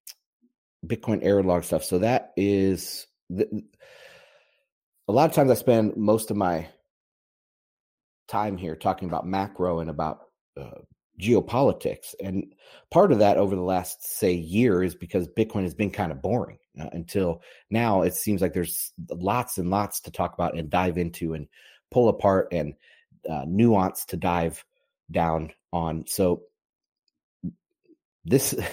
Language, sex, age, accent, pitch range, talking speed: English, male, 30-49, American, 85-105 Hz, 145 wpm